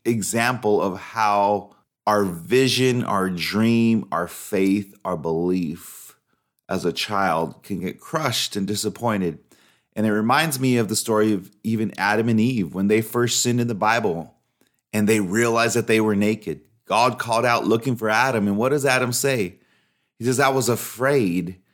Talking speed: 170 wpm